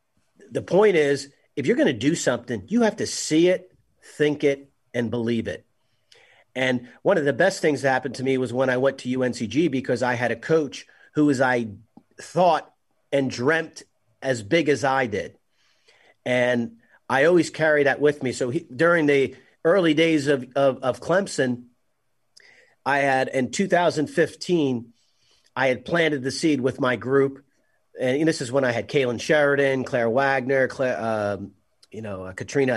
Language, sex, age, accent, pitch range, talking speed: English, male, 40-59, American, 125-150 Hz, 175 wpm